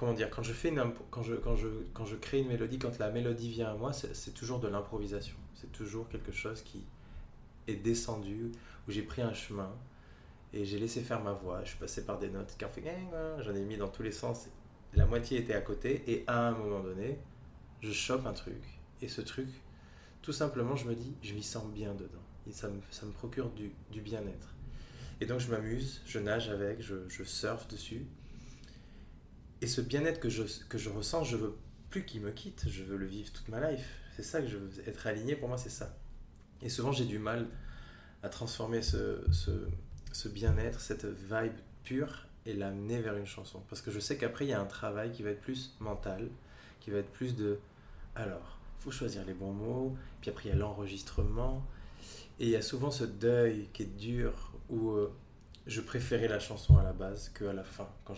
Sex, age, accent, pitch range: male, 20-39, French, 100-120 Hz